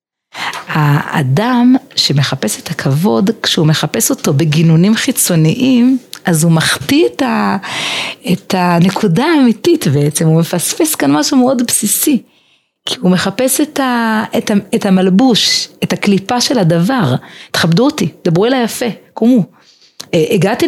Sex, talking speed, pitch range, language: female, 125 wpm, 170-245 Hz, Hebrew